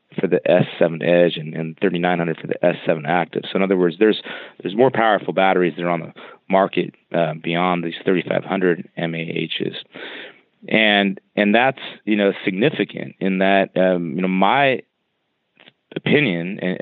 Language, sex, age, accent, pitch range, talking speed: English, male, 30-49, American, 85-95 Hz, 155 wpm